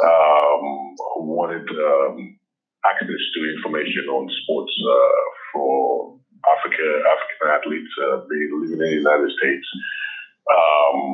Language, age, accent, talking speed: English, 30-49, American, 120 wpm